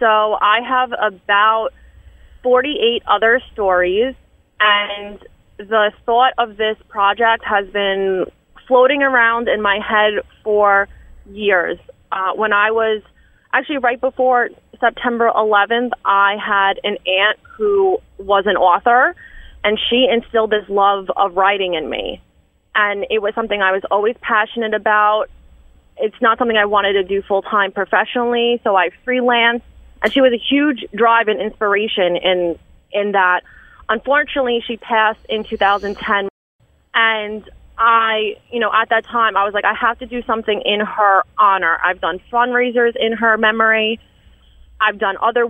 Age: 20-39